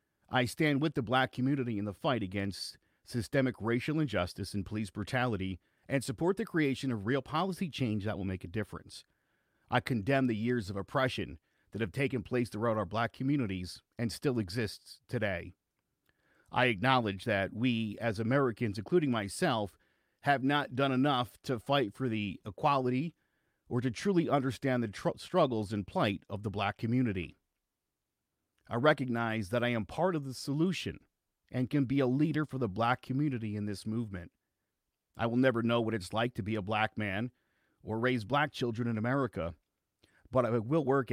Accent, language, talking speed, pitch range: American, English, 175 wpm, 100-130 Hz